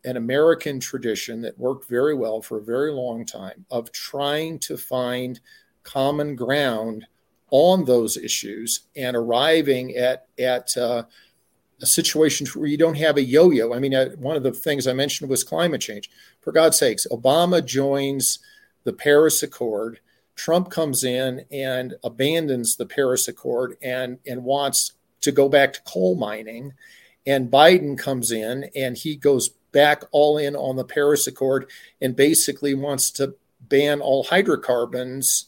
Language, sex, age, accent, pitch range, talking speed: English, male, 50-69, American, 125-150 Hz, 155 wpm